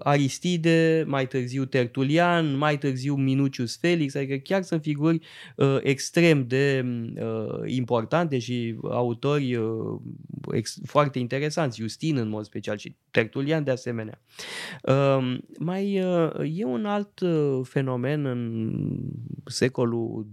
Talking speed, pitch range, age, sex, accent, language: 120 wpm, 125-165 Hz, 20-39, male, native, Romanian